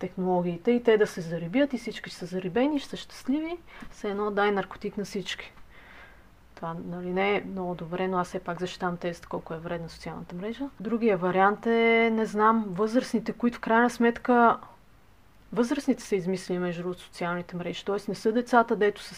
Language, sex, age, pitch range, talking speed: Bulgarian, female, 30-49, 185-225 Hz, 180 wpm